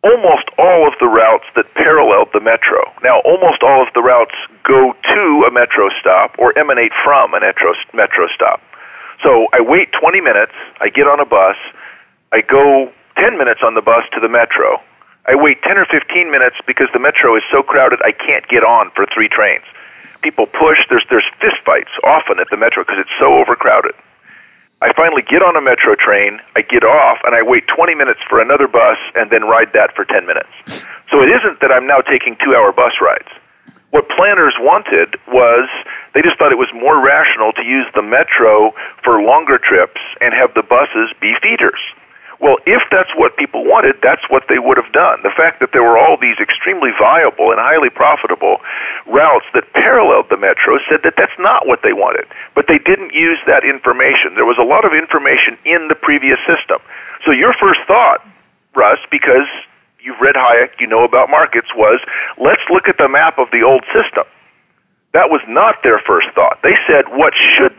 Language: English